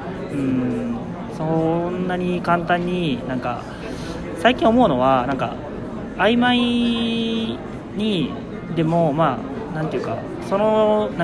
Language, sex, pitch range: Japanese, male, 150-190 Hz